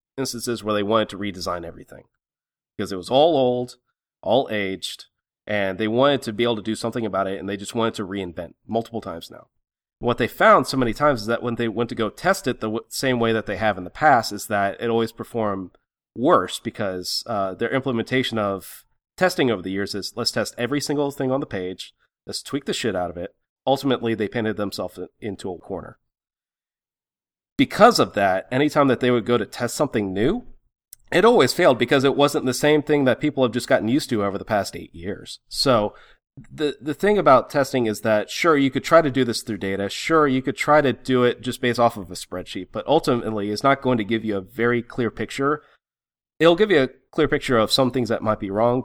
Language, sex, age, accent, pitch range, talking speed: English, male, 30-49, American, 105-130 Hz, 225 wpm